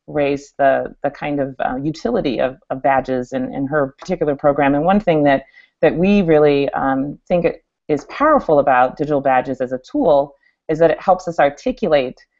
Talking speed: 190 wpm